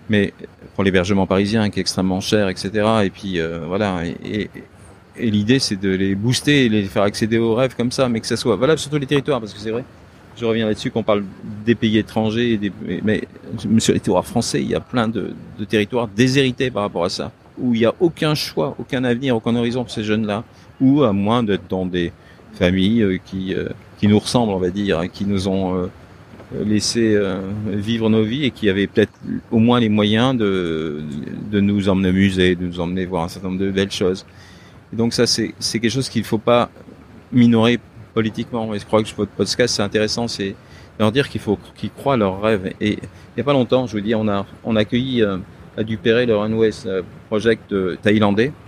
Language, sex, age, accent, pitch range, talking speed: French, male, 50-69, French, 95-115 Hz, 220 wpm